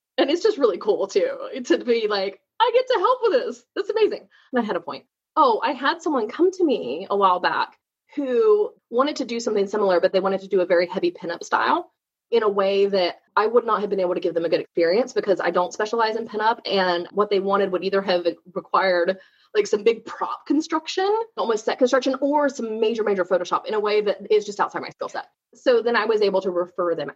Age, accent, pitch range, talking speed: 20-39, American, 190-290 Hz, 240 wpm